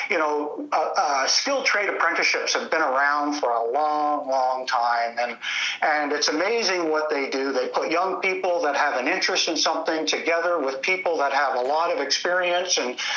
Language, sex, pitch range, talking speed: English, male, 145-185 Hz, 190 wpm